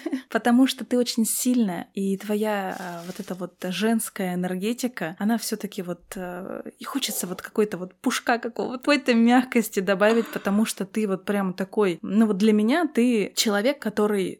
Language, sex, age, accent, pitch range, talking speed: Russian, female, 20-39, native, 190-230 Hz, 170 wpm